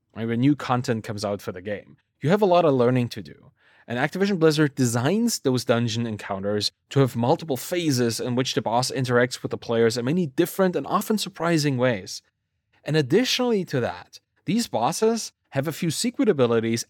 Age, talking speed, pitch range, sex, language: 30-49, 190 wpm, 120-180 Hz, male, English